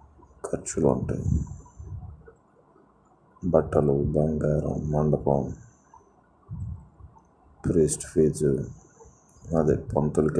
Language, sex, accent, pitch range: Telugu, male, native, 75-85 Hz